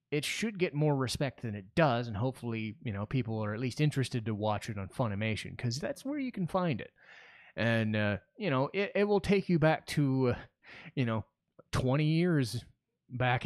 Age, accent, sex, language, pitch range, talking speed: 30-49, American, male, English, 110-140 Hz, 205 wpm